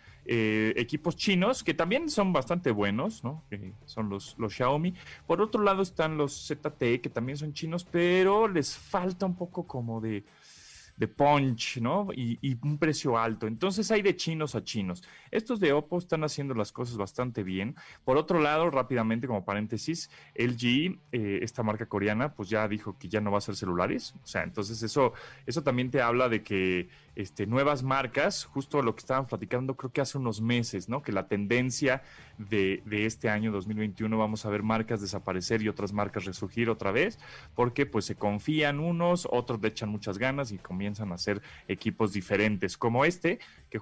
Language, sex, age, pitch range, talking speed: Spanish, male, 30-49, 105-150 Hz, 190 wpm